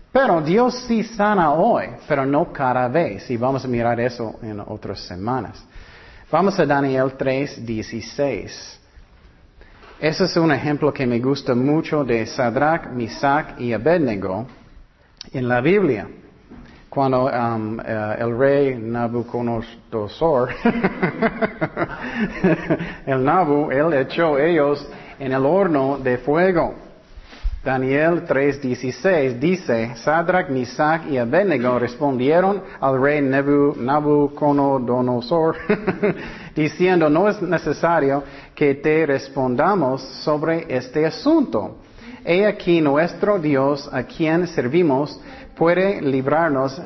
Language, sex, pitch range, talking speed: Spanish, male, 125-165 Hz, 110 wpm